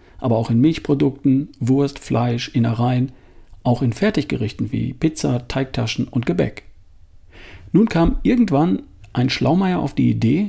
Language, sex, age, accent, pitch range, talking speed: German, male, 50-69, German, 110-150 Hz, 130 wpm